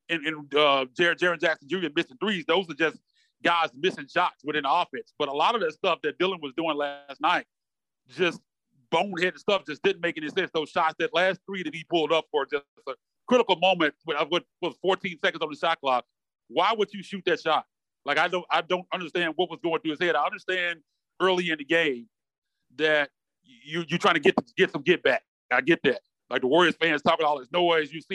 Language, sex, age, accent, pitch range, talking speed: English, male, 30-49, American, 155-190 Hz, 230 wpm